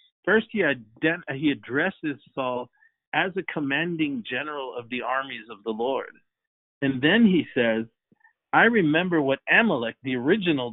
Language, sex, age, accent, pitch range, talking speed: English, male, 50-69, American, 130-165 Hz, 145 wpm